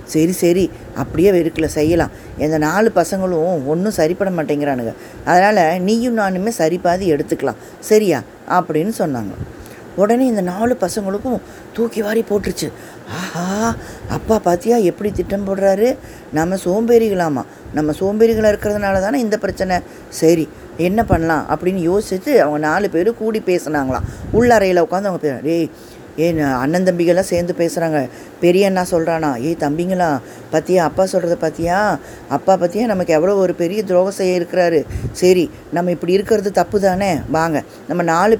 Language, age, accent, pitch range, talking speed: Tamil, 20-39, native, 160-200 Hz, 130 wpm